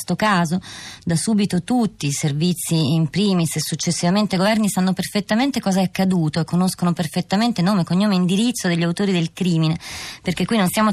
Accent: native